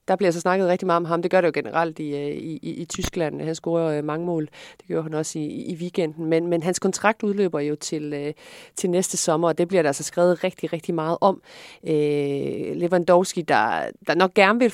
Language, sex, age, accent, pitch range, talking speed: Danish, female, 40-59, native, 150-175 Hz, 230 wpm